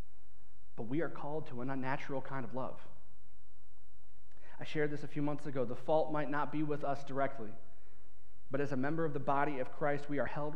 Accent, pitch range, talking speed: American, 100-145 Hz, 210 wpm